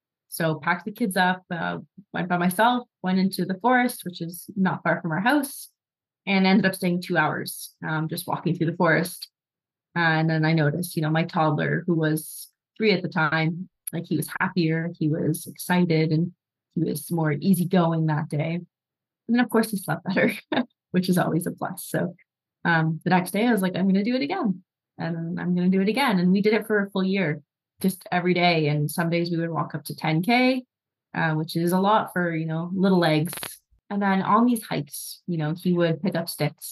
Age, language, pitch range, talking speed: 20-39, English, 155-185 Hz, 220 wpm